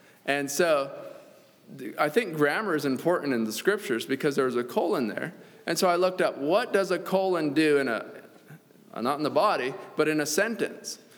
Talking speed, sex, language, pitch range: 195 wpm, male, English, 150-185 Hz